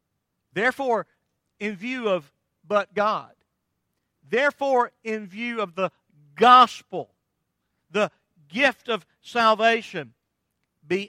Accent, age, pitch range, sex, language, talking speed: American, 50-69, 145-190 Hz, male, English, 90 wpm